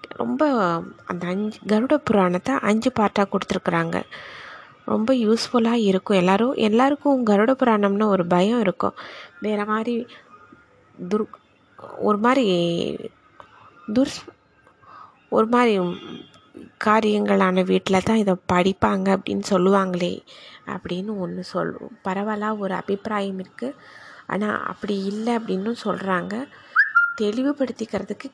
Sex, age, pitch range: female, 20-39, 185-225 Hz